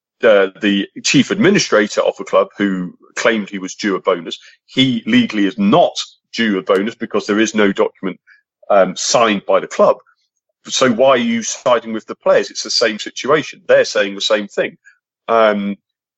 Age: 40-59